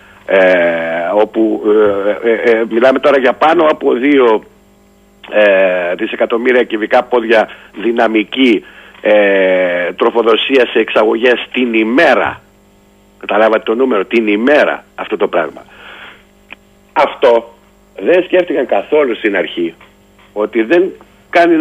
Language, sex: Greek, male